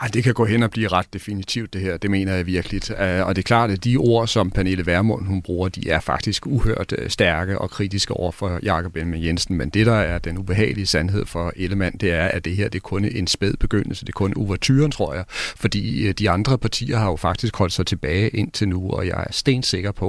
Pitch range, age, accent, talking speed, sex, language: 95-115 Hz, 40-59, native, 240 wpm, male, Danish